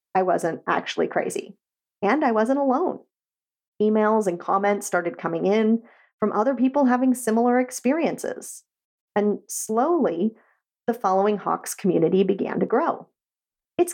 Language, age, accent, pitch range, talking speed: English, 40-59, American, 185-275 Hz, 130 wpm